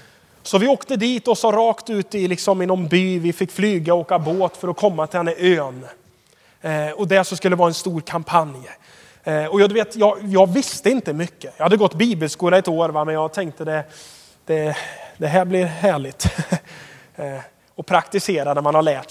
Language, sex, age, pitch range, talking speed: Swedish, male, 20-39, 160-205 Hz, 215 wpm